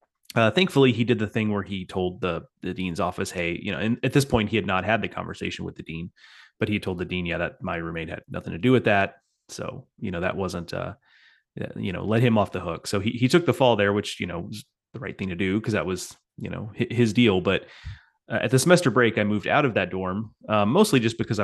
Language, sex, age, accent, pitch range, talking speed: English, male, 30-49, American, 90-115 Hz, 270 wpm